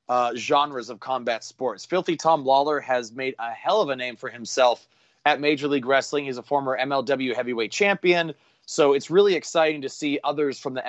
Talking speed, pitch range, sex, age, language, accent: 200 wpm, 120-150 Hz, male, 30-49, English, American